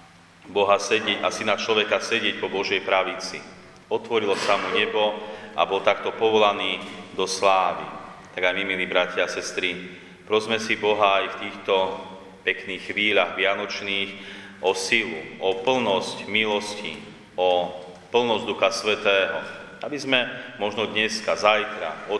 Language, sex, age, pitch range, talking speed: Slovak, male, 40-59, 95-105 Hz, 130 wpm